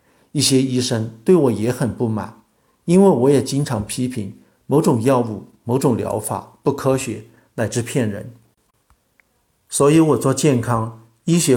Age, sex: 50-69, male